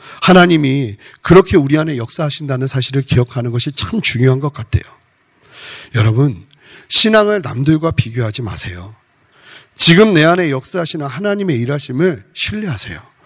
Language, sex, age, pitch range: Korean, male, 40-59, 125-170 Hz